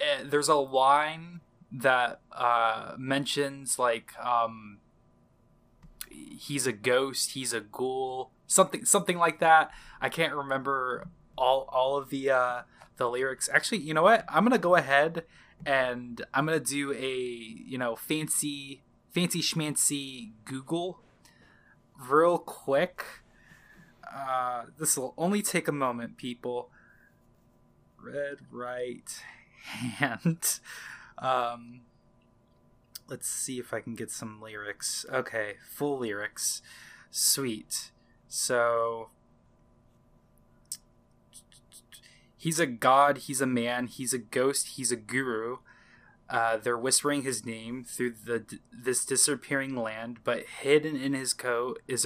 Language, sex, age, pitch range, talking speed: English, male, 20-39, 120-145 Hz, 120 wpm